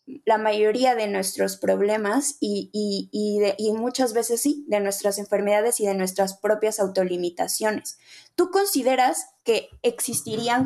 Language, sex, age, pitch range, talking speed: Spanish, female, 20-39, 205-260 Hz, 140 wpm